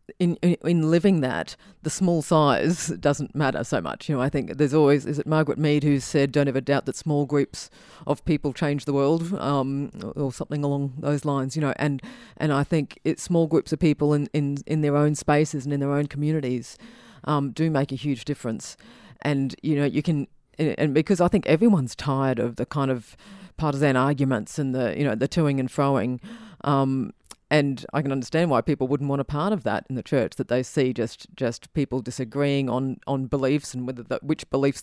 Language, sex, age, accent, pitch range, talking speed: English, female, 40-59, Australian, 130-150 Hz, 215 wpm